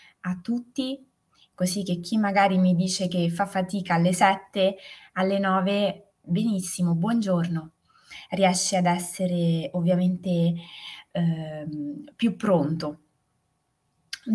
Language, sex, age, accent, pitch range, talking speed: Italian, female, 20-39, native, 165-200 Hz, 105 wpm